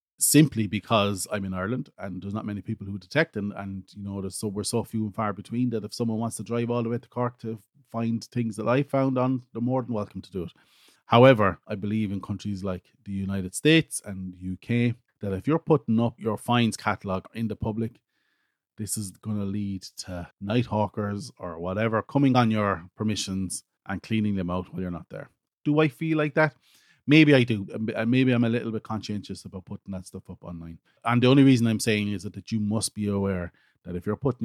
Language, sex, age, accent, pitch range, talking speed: English, male, 30-49, Irish, 95-120 Hz, 225 wpm